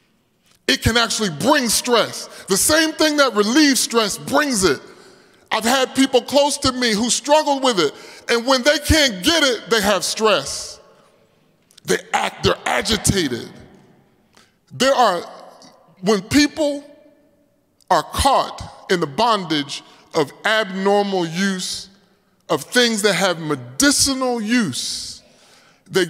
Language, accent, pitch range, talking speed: English, American, 180-255 Hz, 125 wpm